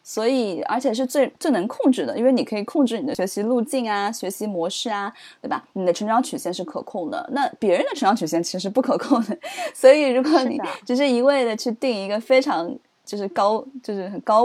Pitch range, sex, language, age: 195-270 Hz, female, Chinese, 20-39